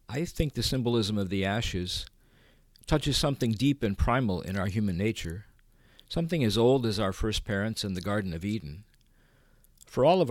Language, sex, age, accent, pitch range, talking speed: English, male, 50-69, American, 95-120 Hz, 180 wpm